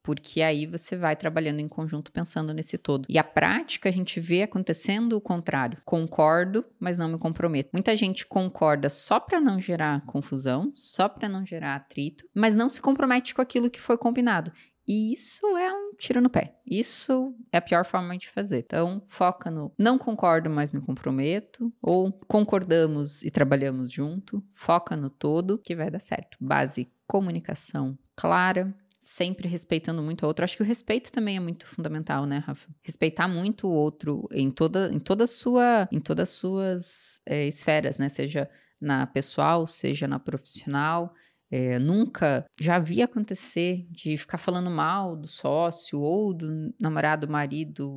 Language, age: Portuguese, 20-39